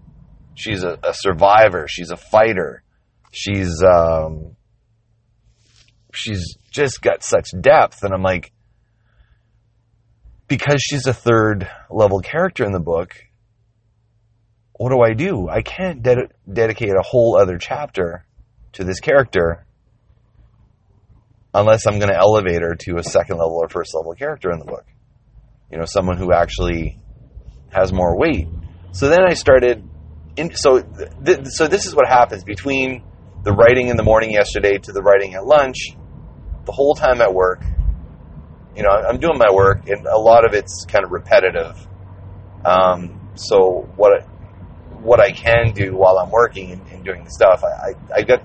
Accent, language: American, English